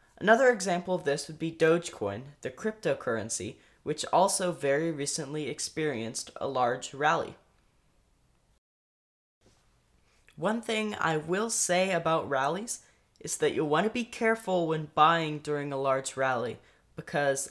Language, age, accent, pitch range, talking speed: English, 10-29, American, 140-180 Hz, 130 wpm